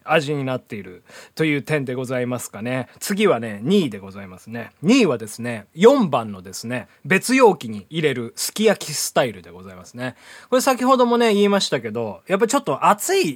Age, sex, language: 20-39, male, Japanese